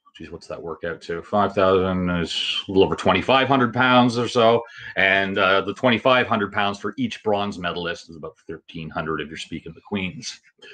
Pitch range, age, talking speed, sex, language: 95-125 Hz, 30-49, 175 wpm, male, English